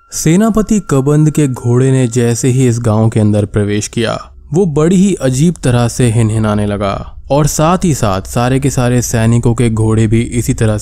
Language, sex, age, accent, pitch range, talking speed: Hindi, male, 20-39, native, 110-140 Hz, 190 wpm